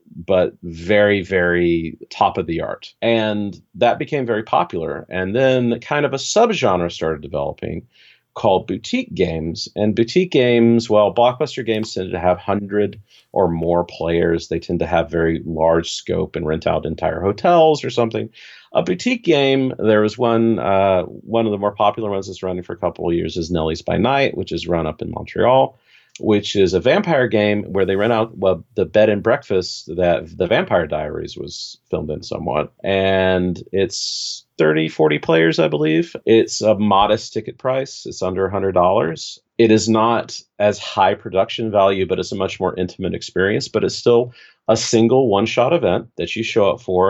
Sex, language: male, English